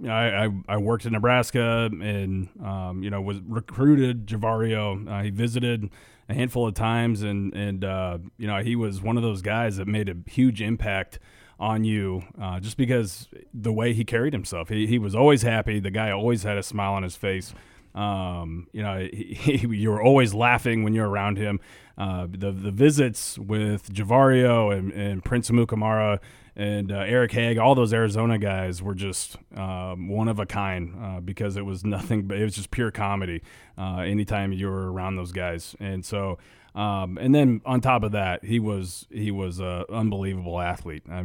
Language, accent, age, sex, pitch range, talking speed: English, American, 30-49, male, 95-115 Hz, 190 wpm